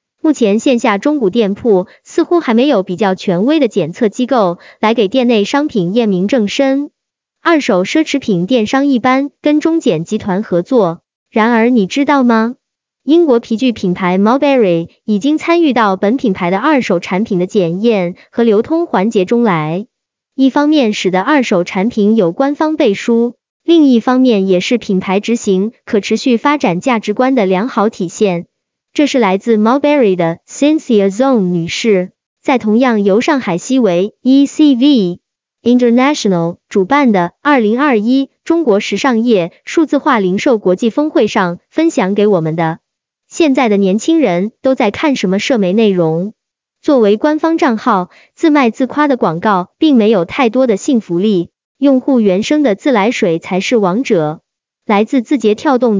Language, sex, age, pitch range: Chinese, male, 20-39, 195-270 Hz